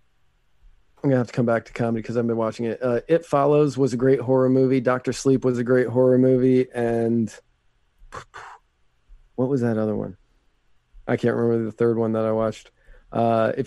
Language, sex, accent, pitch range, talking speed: English, male, American, 95-125 Hz, 200 wpm